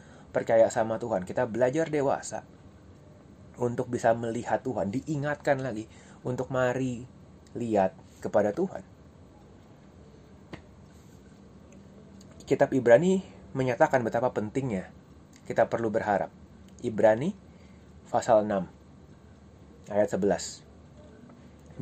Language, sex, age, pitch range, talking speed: Indonesian, male, 30-49, 105-135 Hz, 85 wpm